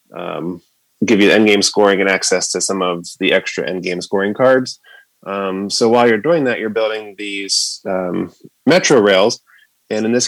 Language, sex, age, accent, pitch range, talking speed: English, male, 20-39, American, 100-115 Hz, 195 wpm